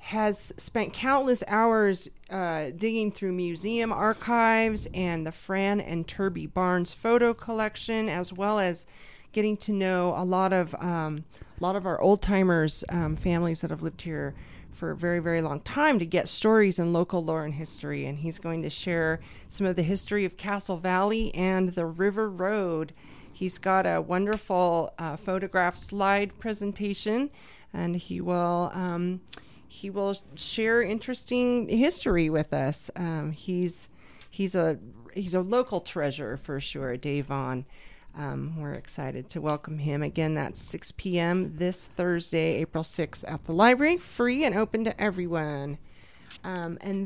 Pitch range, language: 165-205 Hz, English